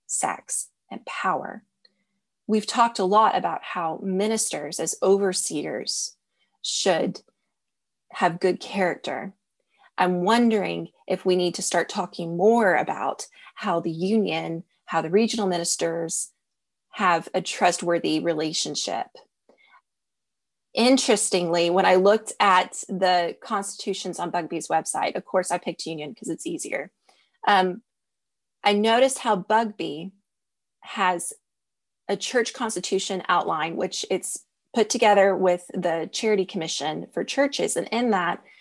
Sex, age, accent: female, 20-39, American